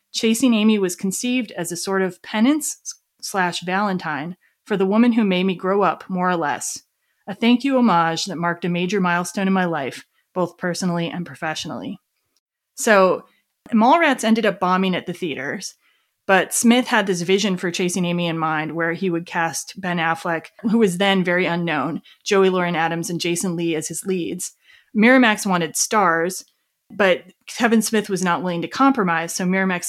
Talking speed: 180 wpm